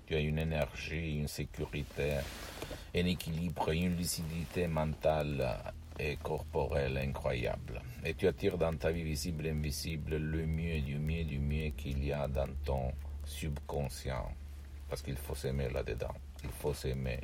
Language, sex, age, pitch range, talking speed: Italian, male, 60-79, 75-105 Hz, 150 wpm